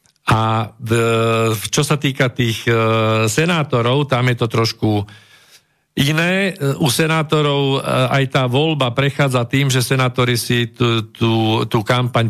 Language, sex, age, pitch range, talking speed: Slovak, male, 50-69, 110-135 Hz, 120 wpm